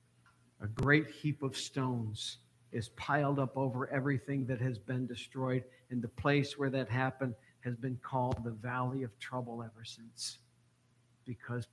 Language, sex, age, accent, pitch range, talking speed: English, male, 60-79, American, 120-170 Hz, 155 wpm